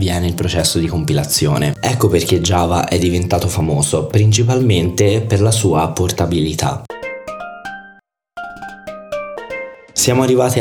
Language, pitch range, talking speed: Italian, 90-115 Hz, 95 wpm